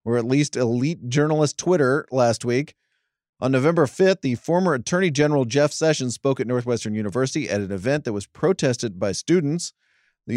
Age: 40-59